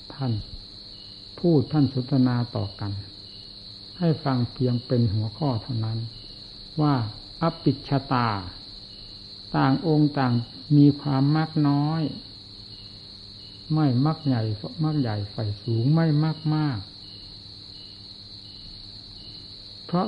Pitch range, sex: 100-140 Hz, male